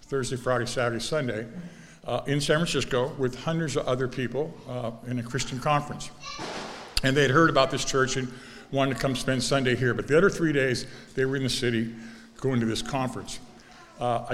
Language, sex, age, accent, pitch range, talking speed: English, male, 50-69, American, 125-150 Hz, 195 wpm